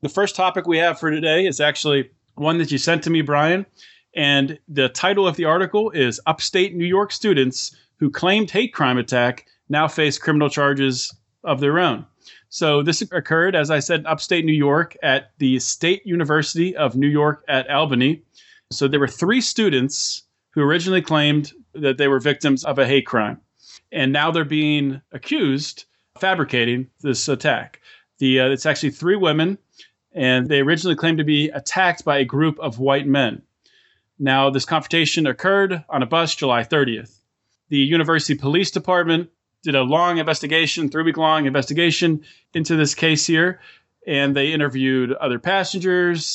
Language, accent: English, American